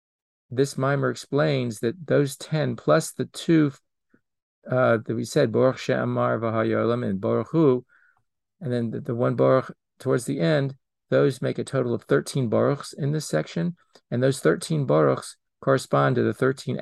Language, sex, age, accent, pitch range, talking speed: English, male, 40-59, American, 115-140 Hz, 145 wpm